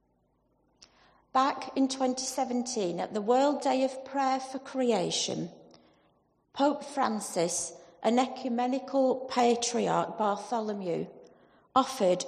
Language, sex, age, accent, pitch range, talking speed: English, female, 40-59, British, 210-265 Hz, 90 wpm